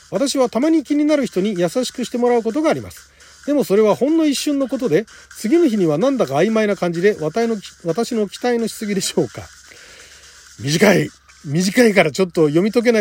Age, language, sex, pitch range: 40-59, Japanese, male, 160-245 Hz